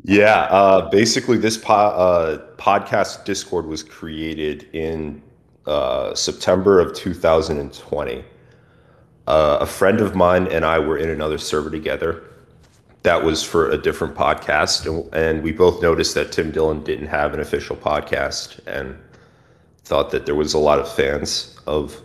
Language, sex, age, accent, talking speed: English, male, 30-49, American, 150 wpm